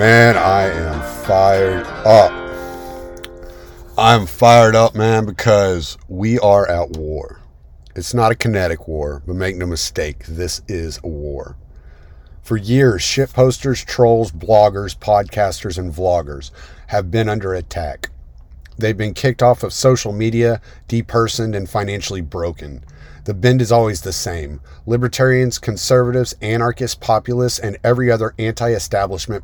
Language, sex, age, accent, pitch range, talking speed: English, male, 50-69, American, 90-120 Hz, 130 wpm